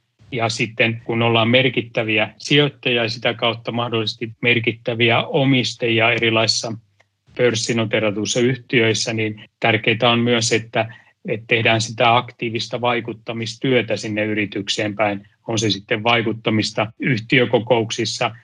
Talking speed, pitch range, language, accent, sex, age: 105 wpm, 110-120 Hz, Finnish, native, male, 30-49